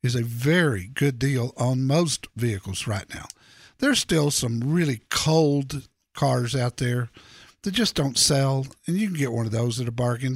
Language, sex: English, male